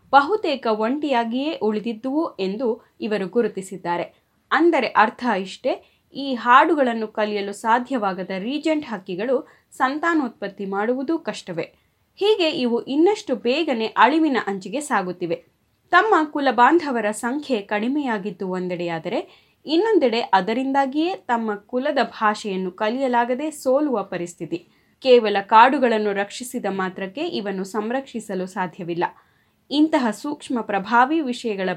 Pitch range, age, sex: 185-270 Hz, 20-39, female